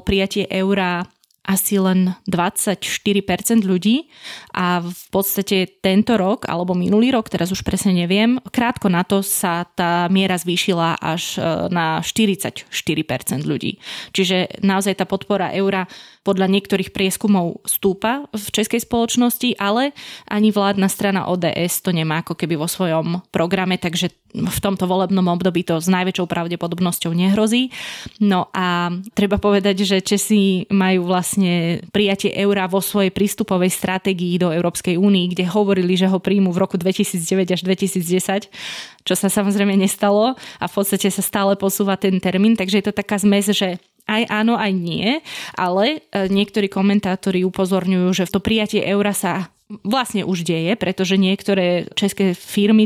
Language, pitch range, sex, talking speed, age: Slovak, 180-205 Hz, female, 145 wpm, 20-39